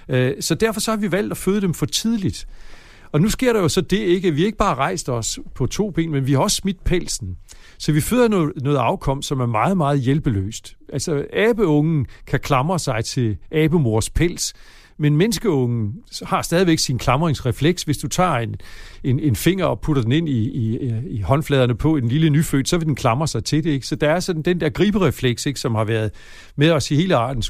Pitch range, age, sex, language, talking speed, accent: 130-180 Hz, 60-79, male, Danish, 225 wpm, native